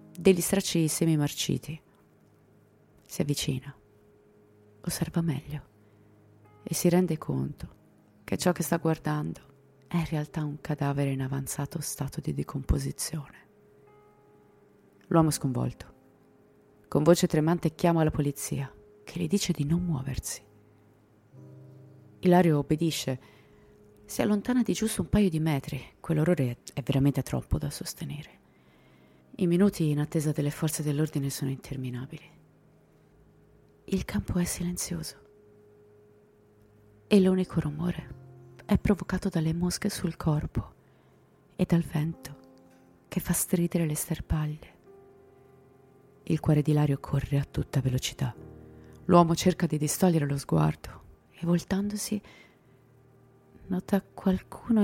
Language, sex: Italian, female